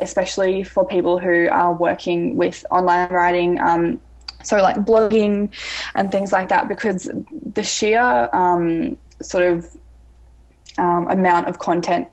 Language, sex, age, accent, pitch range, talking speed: English, female, 10-29, Australian, 175-215 Hz, 135 wpm